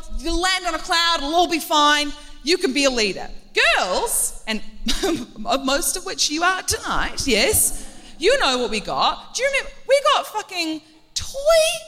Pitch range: 280-420 Hz